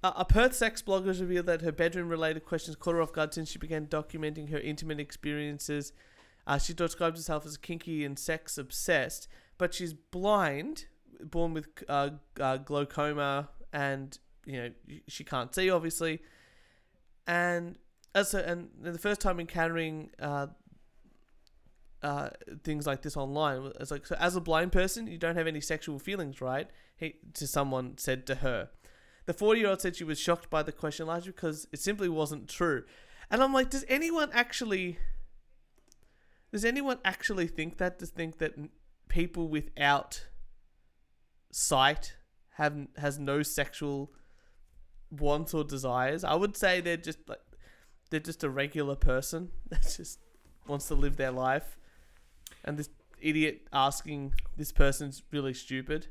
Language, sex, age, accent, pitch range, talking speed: English, male, 30-49, Australian, 140-175 Hz, 155 wpm